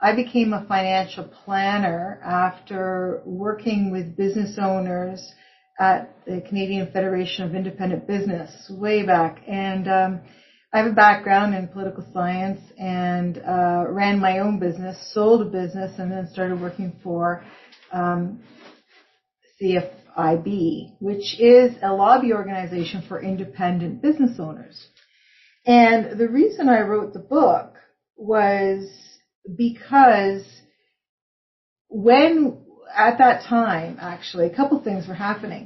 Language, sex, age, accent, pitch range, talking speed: English, female, 40-59, American, 185-220 Hz, 120 wpm